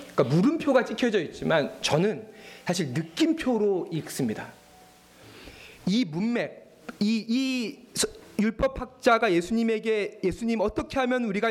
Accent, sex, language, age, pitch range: native, male, Korean, 40-59, 180-250 Hz